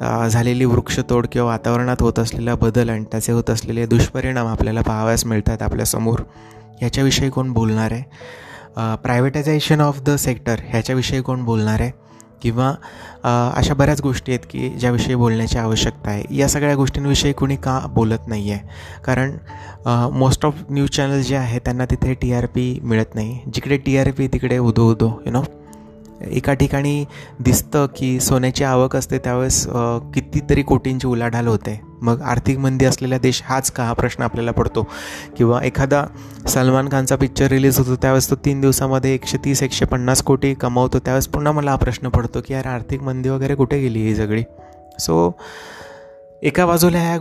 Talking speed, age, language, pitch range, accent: 160 wpm, 20-39, Marathi, 115-135 Hz, native